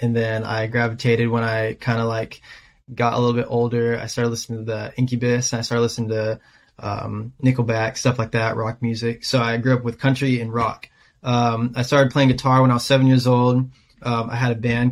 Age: 20-39